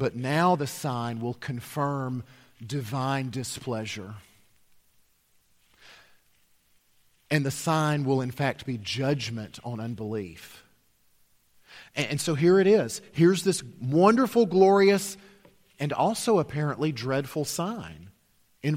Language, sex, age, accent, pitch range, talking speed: English, male, 40-59, American, 120-180 Hz, 105 wpm